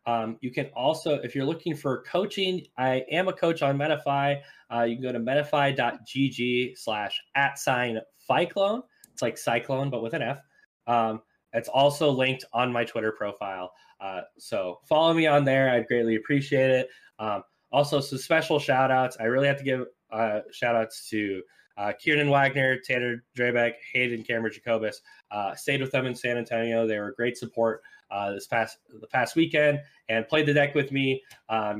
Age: 10-29